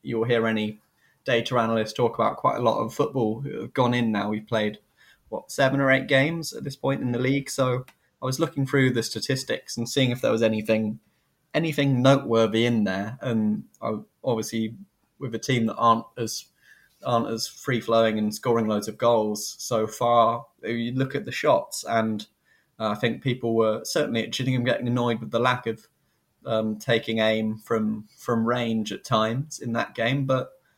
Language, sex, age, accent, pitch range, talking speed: English, male, 20-39, British, 110-125 Hz, 195 wpm